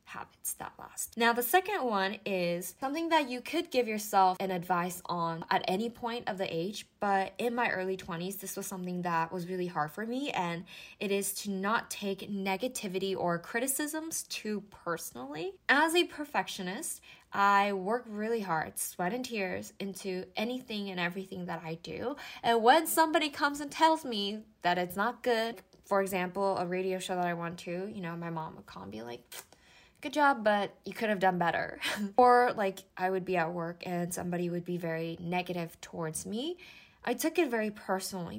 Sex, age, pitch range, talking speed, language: female, 10-29, 180-235 Hz, 190 wpm, English